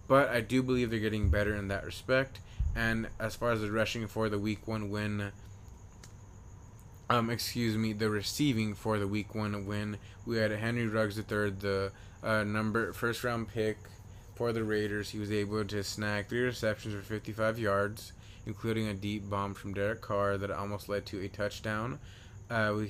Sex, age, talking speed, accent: male, 20-39, 185 wpm, American